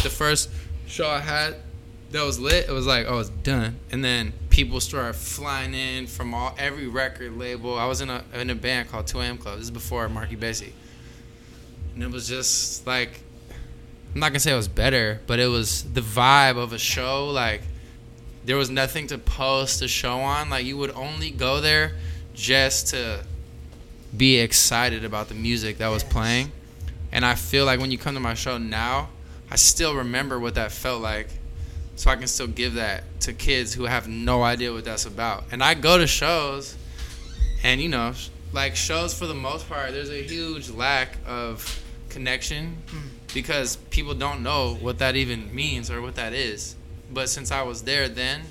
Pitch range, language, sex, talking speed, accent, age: 85-130 Hz, English, male, 195 wpm, American, 20-39